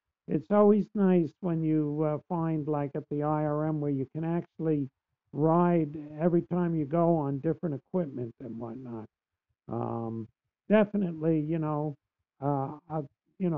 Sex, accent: male, American